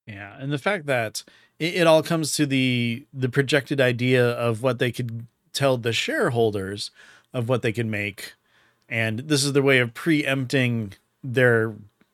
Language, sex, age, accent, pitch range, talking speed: English, male, 30-49, American, 115-145 Hz, 165 wpm